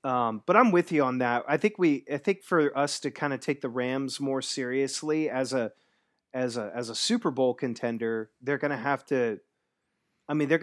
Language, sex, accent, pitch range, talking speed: English, male, American, 125-155 Hz, 220 wpm